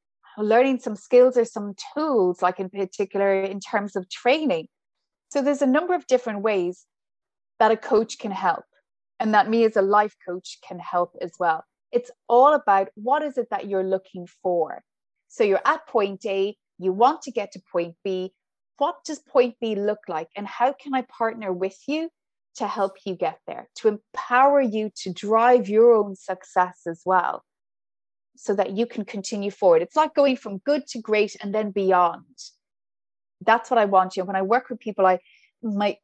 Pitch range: 190-245 Hz